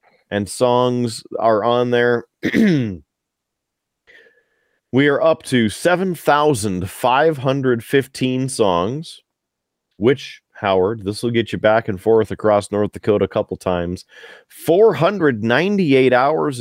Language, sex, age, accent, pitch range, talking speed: English, male, 30-49, American, 105-145 Hz, 100 wpm